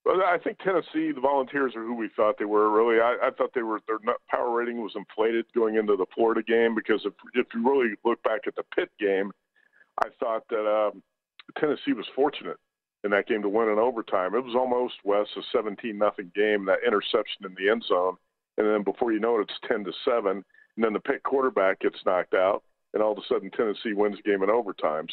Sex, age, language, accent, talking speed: male, 50-69, English, American, 220 wpm